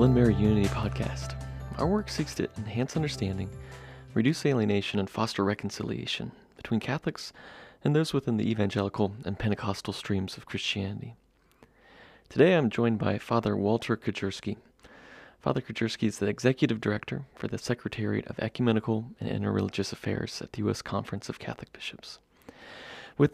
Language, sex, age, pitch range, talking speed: English, male, 30-49, 100-120 Hz, 145 wpm